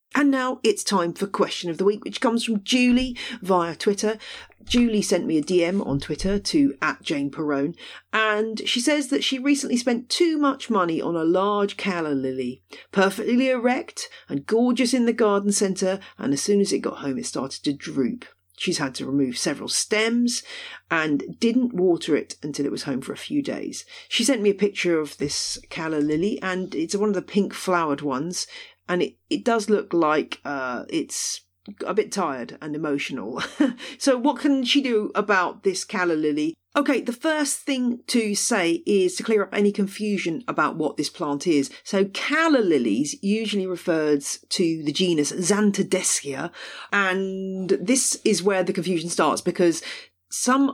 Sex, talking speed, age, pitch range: female, 180 wpm, 40-59, 170-245 Hz